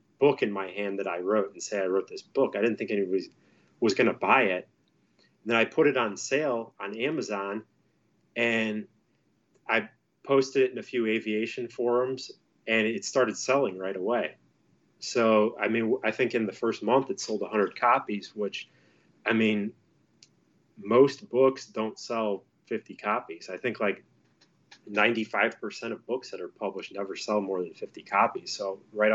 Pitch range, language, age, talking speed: 100-130 Hz, English, 30-49, 175 wpm